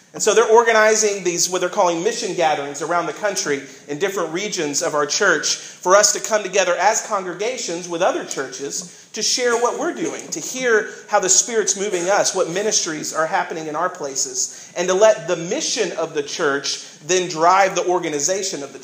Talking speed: 200 wpm